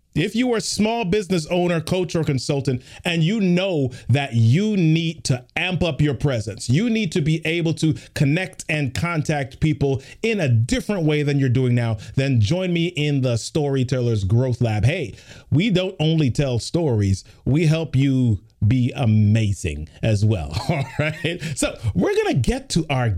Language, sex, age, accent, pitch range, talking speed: English, male, 30-49, American, 130-180 Hz, 175 wpm